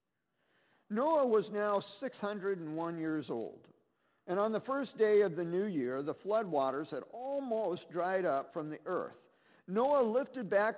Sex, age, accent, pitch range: male, 50-69, American, 150-215 Hz